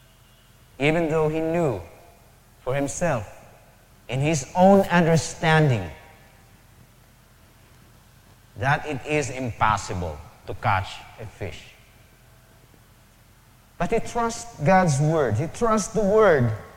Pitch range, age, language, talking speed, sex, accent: 110-145 Hz, 30-49, English, 95 wpm, male, Filipino